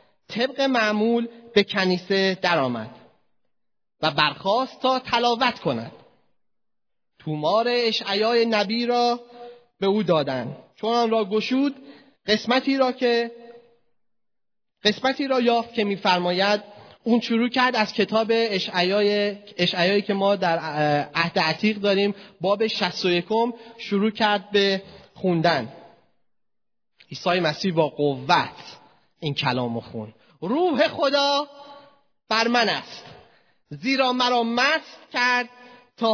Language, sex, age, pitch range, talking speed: Persian, male, 30-49, 190-240 Hz, 110 wpm